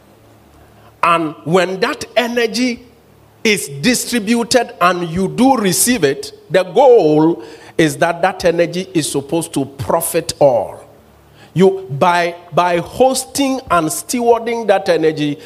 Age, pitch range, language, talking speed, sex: 50-69, 155-225 Hz, English, 115 wpm, male